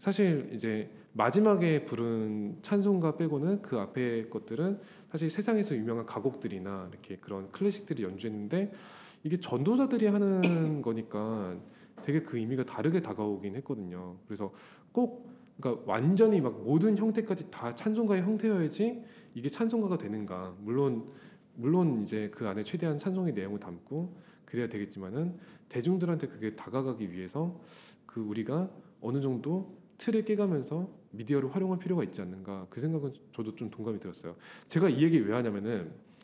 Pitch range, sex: 110-190 Hz, male